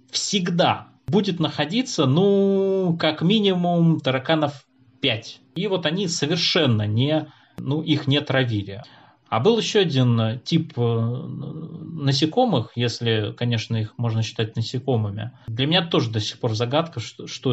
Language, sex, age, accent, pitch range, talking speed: Russian, male, 20-39, native, 115-160 Hz, 125 wpm